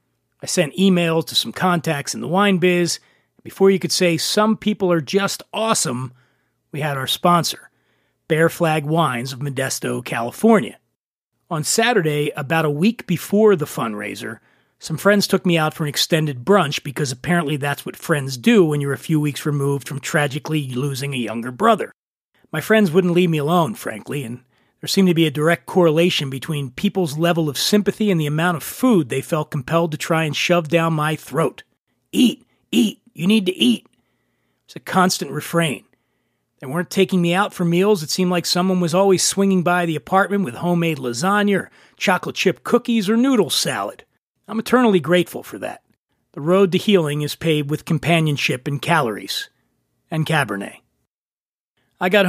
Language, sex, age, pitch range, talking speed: English, male, 40-59, 145-185 Hz, 180 wpm